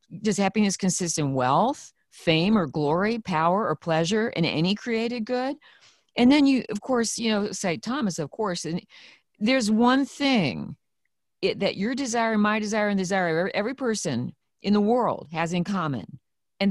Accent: American